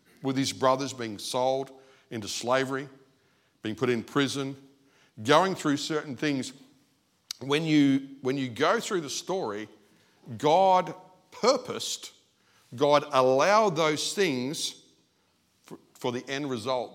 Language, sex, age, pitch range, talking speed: English, male, 50-69, 125-160 Hz, 115 wpm